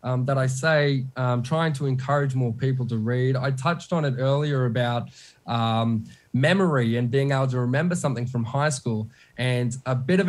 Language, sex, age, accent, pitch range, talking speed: English, male, 20-39, Australian, 130-180 Hz, 190 wpm